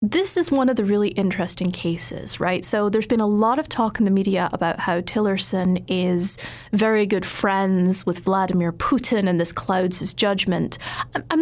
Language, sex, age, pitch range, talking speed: English, female, 30-49, 185-225 Hz, 185 wpm